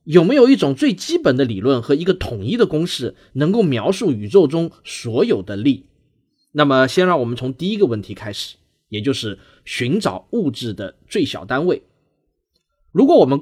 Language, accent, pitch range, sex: Chinese, native, 115-180 Hz, male